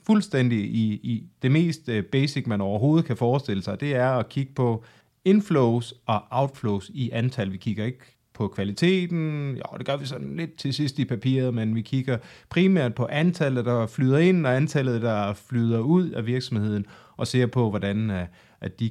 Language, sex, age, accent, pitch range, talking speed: Danish, male, 30-49, native, 100-125 Hz, 185 wpm